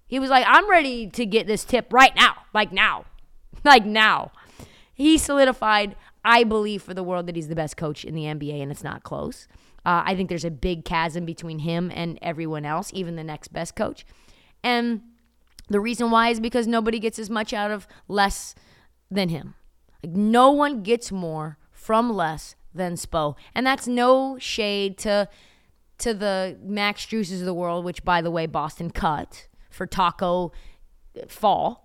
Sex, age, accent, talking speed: female, 20-39, American, 180 wpm